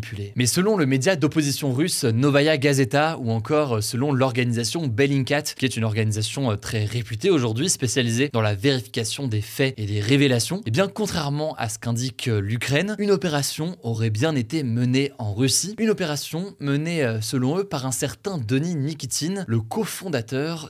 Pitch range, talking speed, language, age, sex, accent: 115-145 Hz, 160 wpm, French, 20-39, male, French